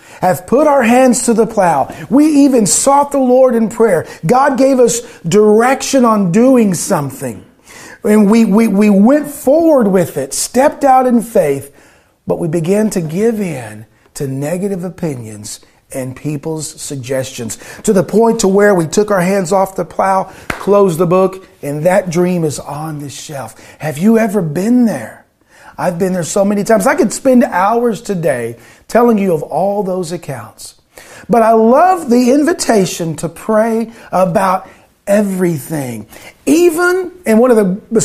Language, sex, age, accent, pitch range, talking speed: English, male, 40-59, American, 170-240 Hz, 165 wpm